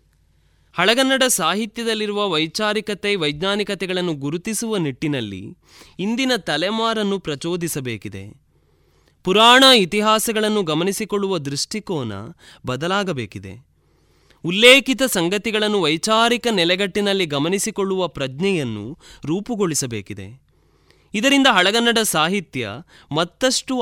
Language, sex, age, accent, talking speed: Kannada, male, 20-39, native, 65 wpm